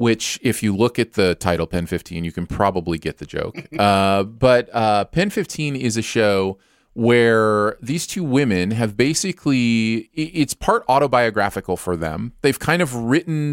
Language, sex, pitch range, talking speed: English, male, 95-130 Hz, 160 wpm